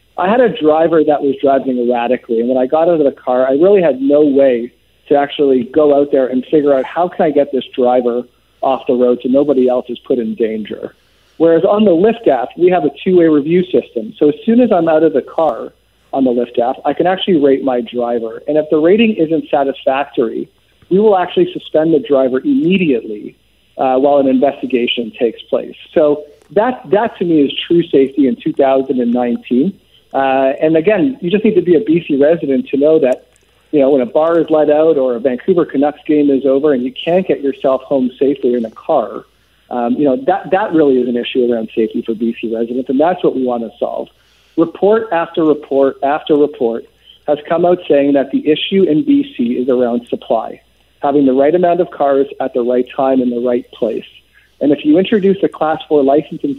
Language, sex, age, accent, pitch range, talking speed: English, male, 50-69, American, 130-165 Hz, 215 wpm